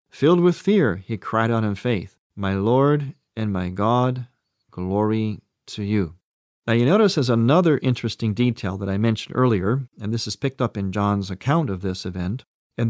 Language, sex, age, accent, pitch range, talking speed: English, male, 40-59, American, 105-140 Hz, 180 wpm